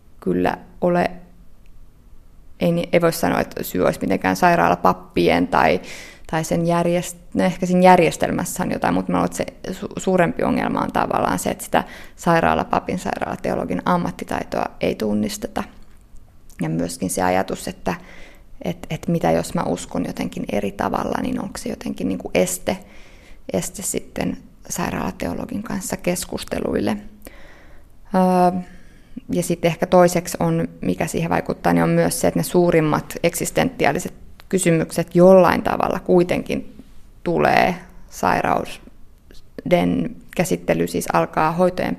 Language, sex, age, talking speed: Finnish, female, 20-39, 125 wpm